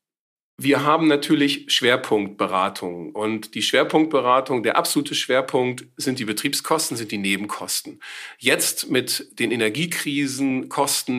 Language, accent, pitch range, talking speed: German, German, 110-145 Hz, 105 wpm